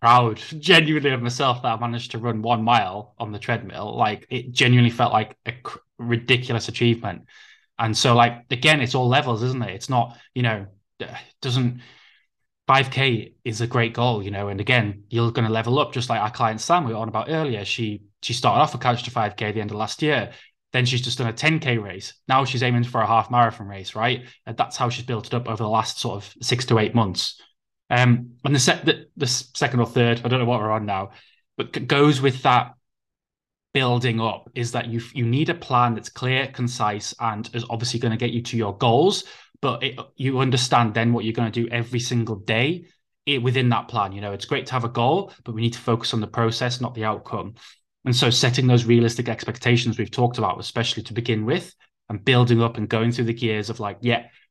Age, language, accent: 20-39, English, British